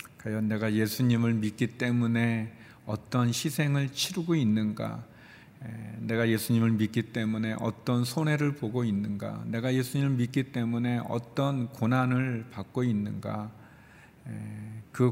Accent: native